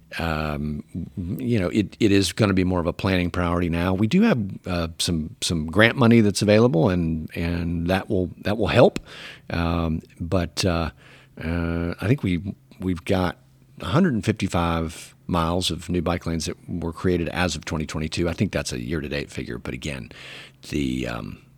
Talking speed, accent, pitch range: 175 wpm, American, 85-105 Hz